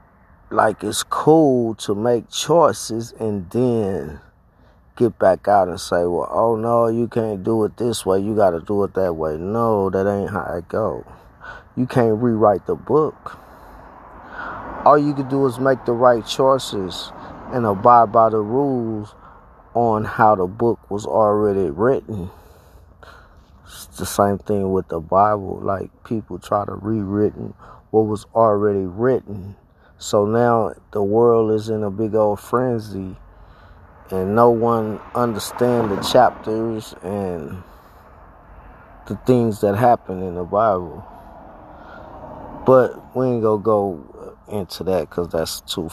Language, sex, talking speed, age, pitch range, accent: English, male, 145 wpm, 20-39, 95-115 Hz, American